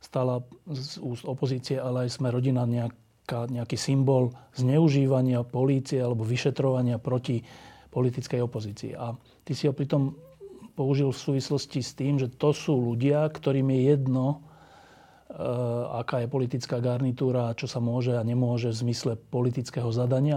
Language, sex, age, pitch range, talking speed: Slovak, male, 40-59, 120-140 Hz, 140 wpm